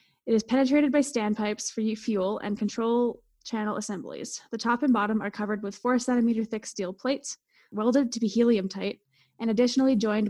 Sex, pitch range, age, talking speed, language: female, 205-245 Hz, 10-29, 180 wpm, English